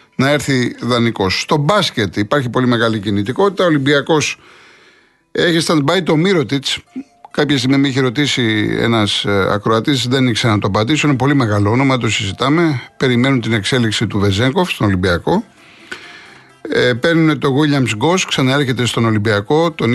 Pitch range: 115-150 Hz